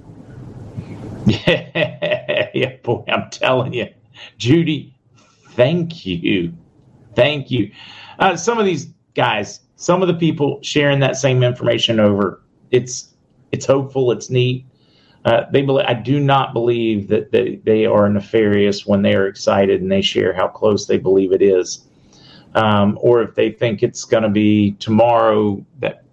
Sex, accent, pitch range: male, American, 110-135 Hz